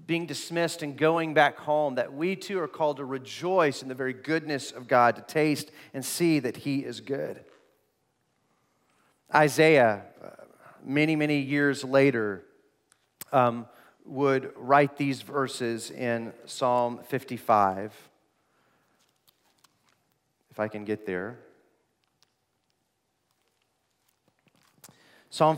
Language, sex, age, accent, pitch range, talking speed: English, male, 40-59, American, 140-170 Hz, 110 wpm